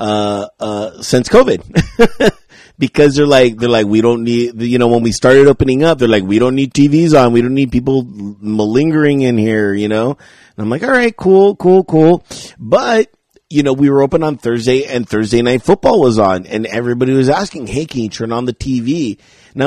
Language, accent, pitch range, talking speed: English, American, 115-155 Hz, 210 wpm